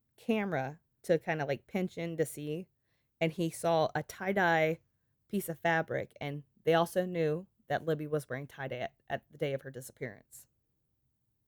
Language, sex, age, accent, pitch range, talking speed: English, female, 20-39, American, 140-185 Hz, 165 wpm